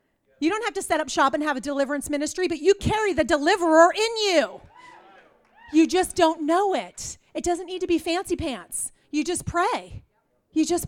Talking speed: 200 wpm